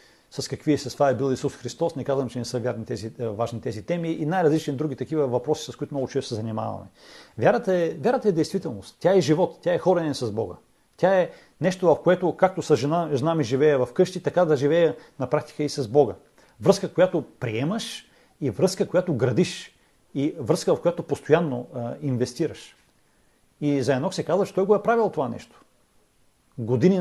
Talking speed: 195 wpm